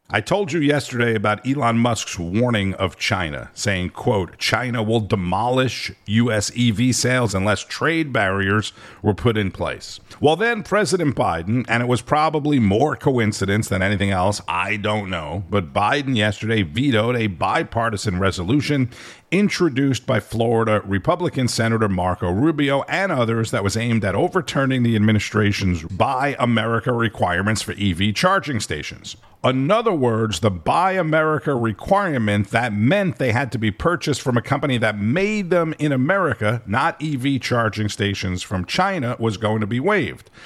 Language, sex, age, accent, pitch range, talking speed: English, male, 50-69, American, 105-135 Hz, 155 wpm